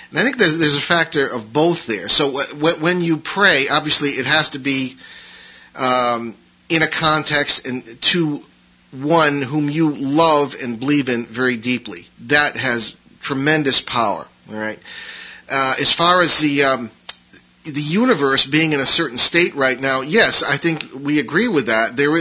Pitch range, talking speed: 125-160 Hz, 175 wpm